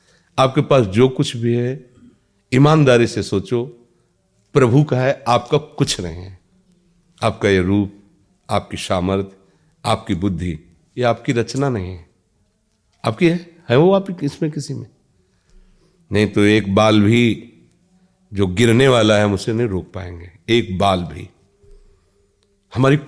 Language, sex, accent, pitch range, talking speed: Hindi, male, native, 100-140 Hz, 140 wpm